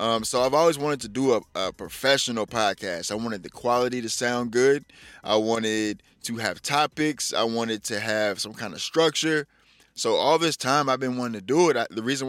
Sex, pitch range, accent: male, 115-150 Hz, American